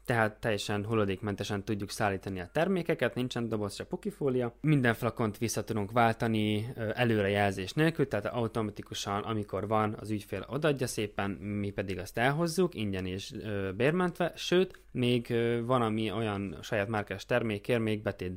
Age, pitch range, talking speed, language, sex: 20-39, 100-120 Hz, 145 wpm, Hungarian, male